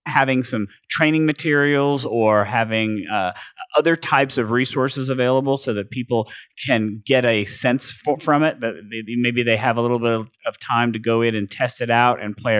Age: 30-49